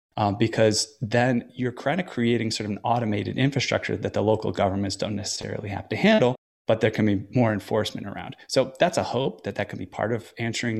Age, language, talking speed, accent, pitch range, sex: 20-39, English, 215 wpm, American, 105-125 Hz, male